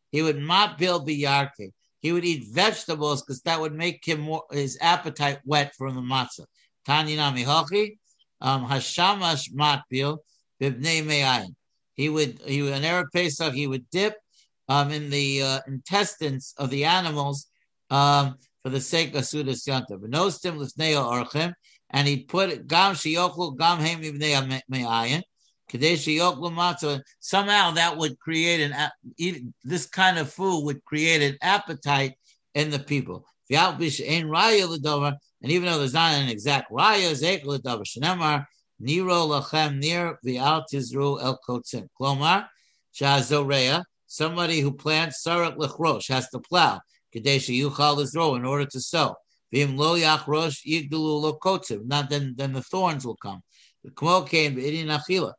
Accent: American